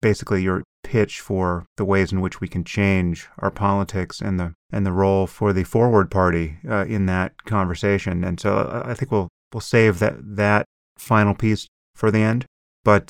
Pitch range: 90-105 Hz